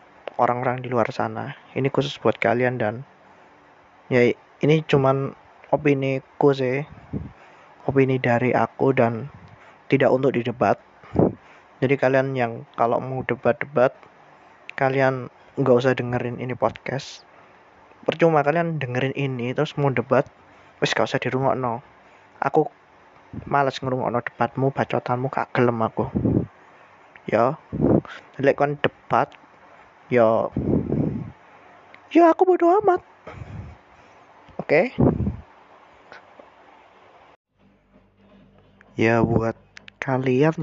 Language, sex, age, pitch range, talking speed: Indonesian, male, 20-39, 115-140 Hz, 95 wpm